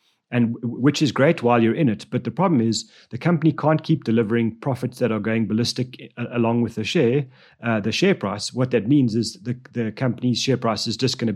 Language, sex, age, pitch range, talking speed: English, male, 30-49, 115-135 Hz, 225 wpm